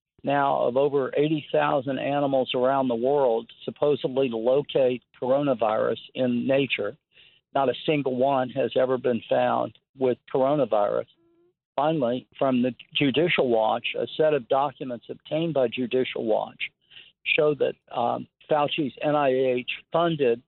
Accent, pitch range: American, 125-145 Hz